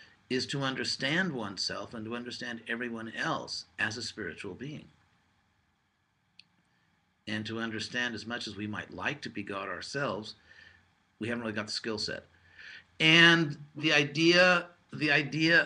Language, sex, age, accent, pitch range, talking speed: English, male, 50-69, American, 105-135 Hz, 145 wpm